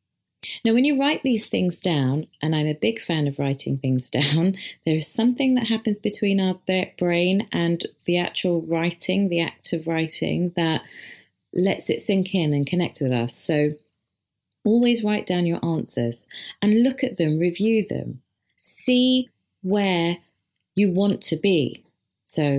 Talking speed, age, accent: 160 wpm, 30-49, British